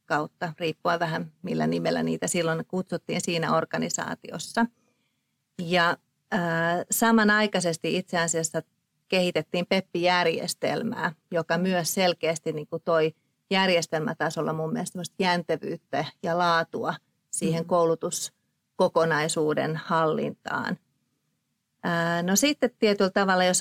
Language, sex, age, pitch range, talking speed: Finnish, female, 40-59, 160-190 Hz, 95 wpm